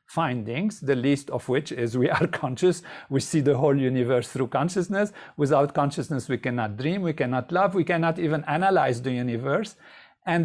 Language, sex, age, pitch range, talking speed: English, male, 50-69, 130-185 Hz, 180 wpm